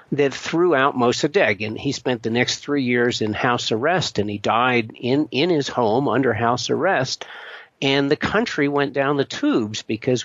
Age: 50-69